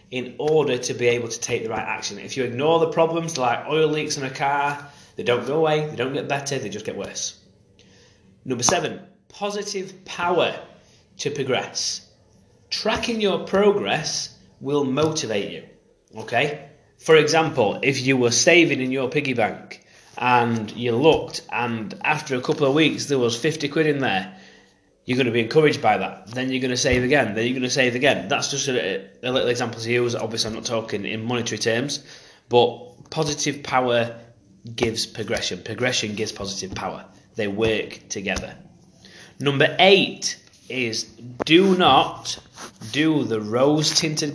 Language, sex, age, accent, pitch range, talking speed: English, male, 30-49, British, 115-155 Hz, 170 wpm